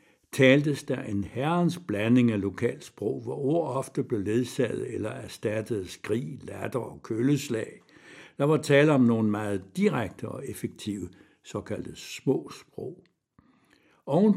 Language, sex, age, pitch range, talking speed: Danish, male, 60-79, 105-150 Hz, 125 wpm